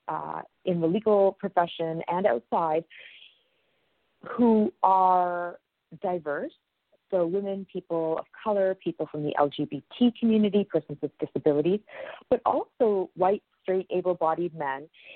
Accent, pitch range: American, 155-195 Hz